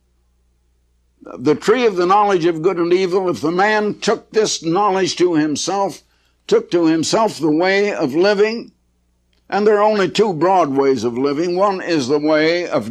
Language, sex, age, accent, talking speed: English, male, 60-79, American, 175 wpm